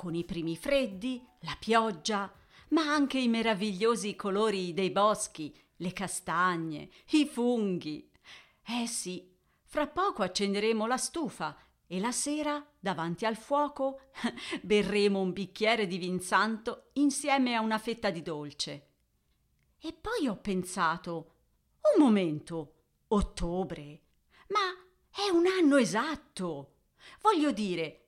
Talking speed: 120 wpm